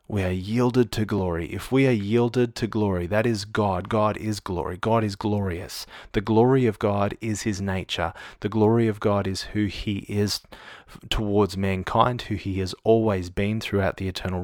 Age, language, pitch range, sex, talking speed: 30-49, English, 95-110 Hz, male, 185 wpm